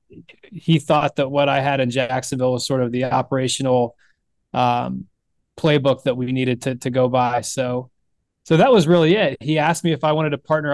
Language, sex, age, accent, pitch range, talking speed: English, male, 20-39, American, 130-150 Hz, 200 wpm